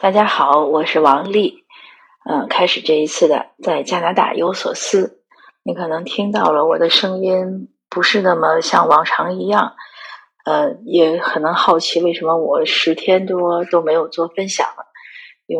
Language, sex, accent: Chinese, female, native